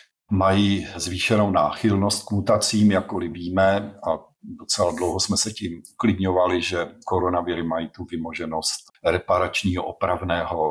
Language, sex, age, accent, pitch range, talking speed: Czech, male, 50-69, native, 90-100 Hz, 120 wpm